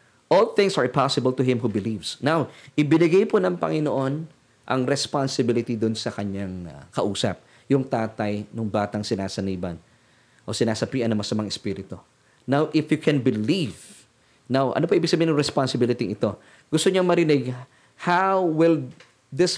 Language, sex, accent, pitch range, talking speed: Filipino, male, native, 115-145 Hz, 145 wpm